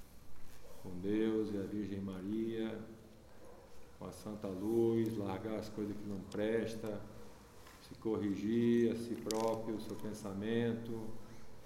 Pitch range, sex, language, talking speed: 100-120 Hz, male, English, 125 wpm